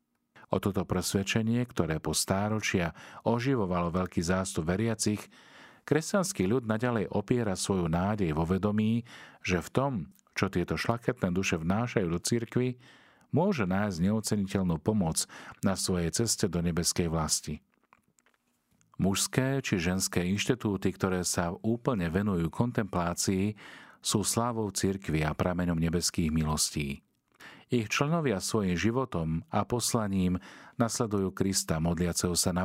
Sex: male